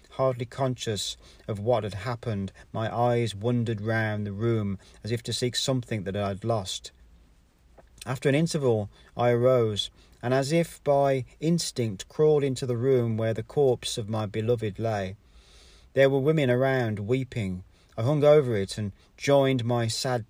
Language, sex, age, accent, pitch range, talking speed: English, male, 40-59, British, 100-125 Hz, 165 wpm